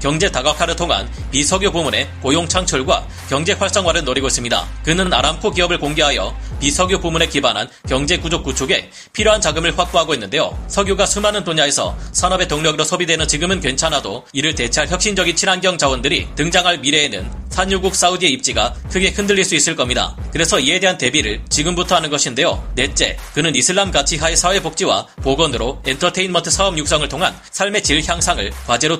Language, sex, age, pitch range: Korean, male, 30-49, 145-185 Hz